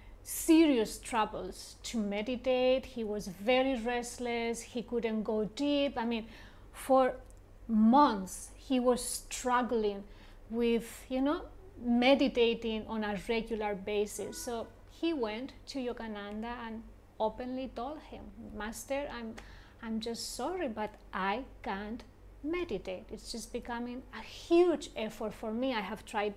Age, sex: 30-49, female